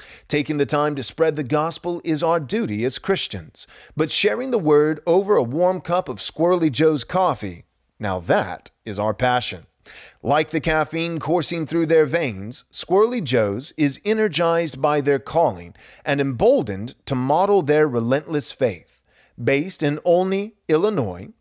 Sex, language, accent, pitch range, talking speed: male, English, American, 140-190 Hz, 150 wpm